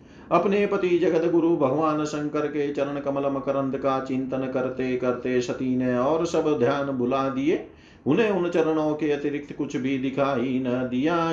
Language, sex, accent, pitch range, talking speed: Hindi, male, native, 130-155 Hz, 165 wpm